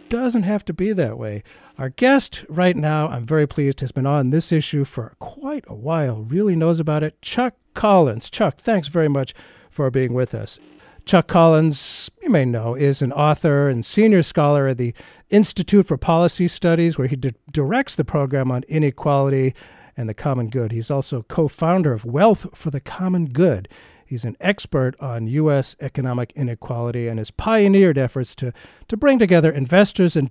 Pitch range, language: 130-180 Hz, English